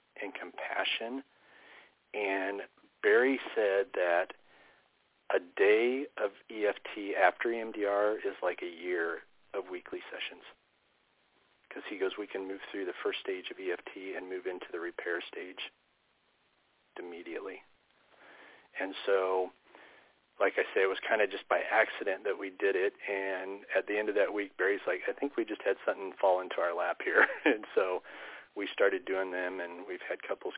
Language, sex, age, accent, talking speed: English, male, 40-59, American, 165 wpm